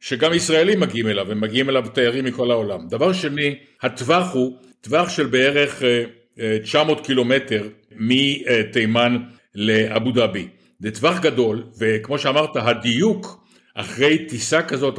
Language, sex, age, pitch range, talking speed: Hebrew, male, 60-79, 115-145 Hz, 125 wpm